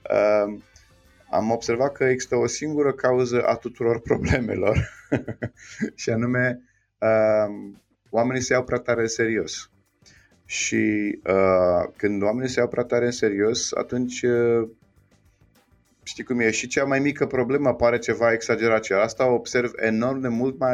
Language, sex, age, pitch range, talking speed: Romanian, male, 30-49, 105-125 Hz, 150 wpm